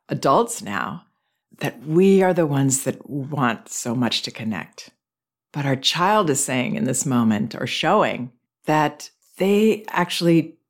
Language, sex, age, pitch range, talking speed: English, female, 50-69, 135-175 Hz, 145 wpm